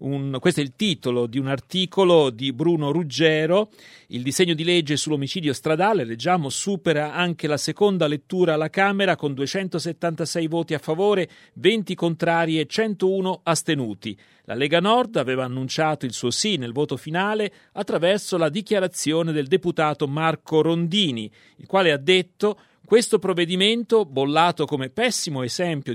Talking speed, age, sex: 145 wpm, 40-59, male